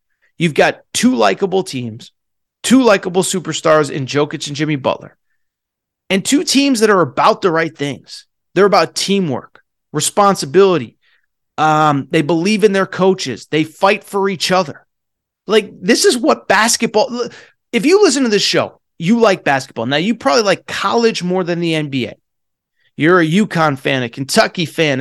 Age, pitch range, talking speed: 30-49, 165-220 Hz, 160 wpm